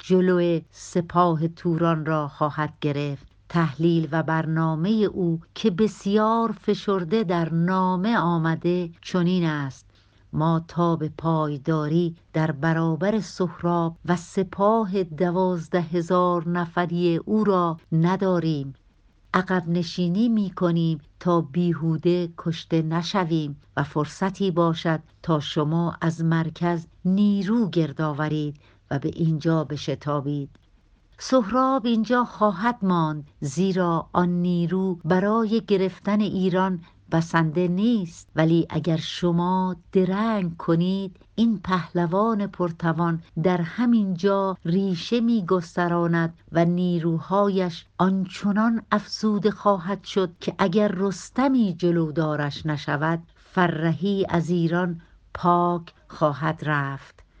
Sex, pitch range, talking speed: female, 160-190 Hz, 100 wpm